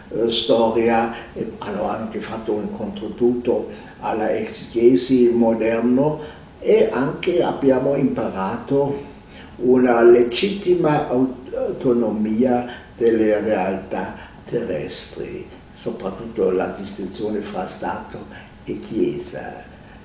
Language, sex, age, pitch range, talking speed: Italian, male, 60-79, 115-145 Hz, 80 wpm